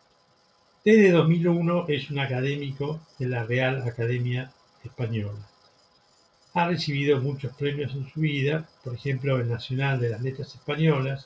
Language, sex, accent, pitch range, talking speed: Spanish, male, Argentinian, 125-155 Hz, 135 wpm